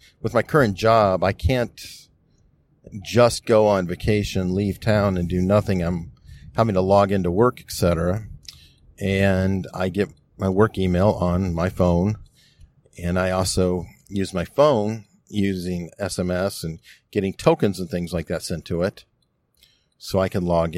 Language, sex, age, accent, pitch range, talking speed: English, male, 50-69, American, 90-120 Hz, 155 wpm